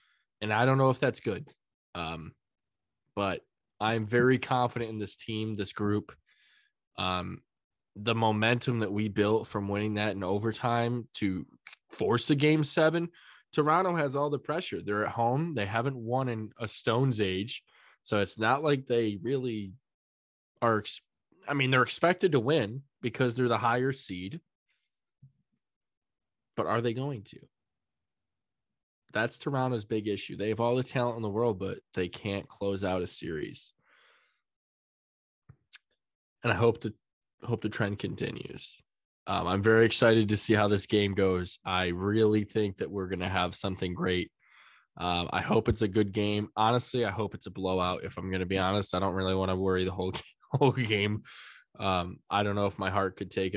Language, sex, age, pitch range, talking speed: English, male, 20-39, 95-120 Hz, 170 wpm